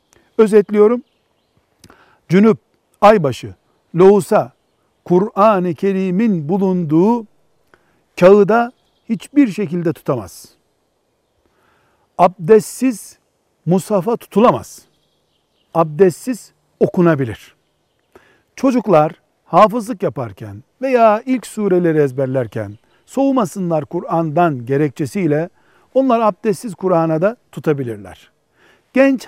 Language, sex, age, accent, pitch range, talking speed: Turkish, male, 60-79, native, 155-210 Hz, 65 wpm